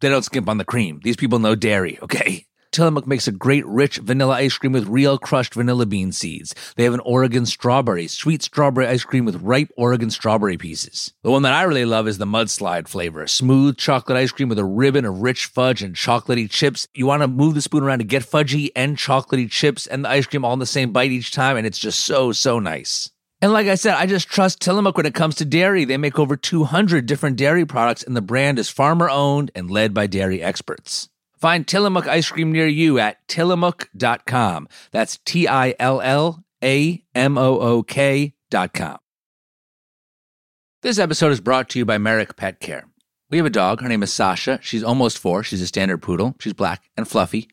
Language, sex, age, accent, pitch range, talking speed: English, male, 30-49, American, 115-145 Hz, 205 wpm